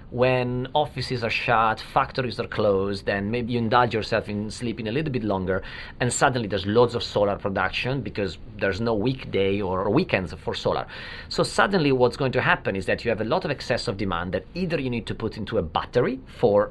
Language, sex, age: English, male, 40-59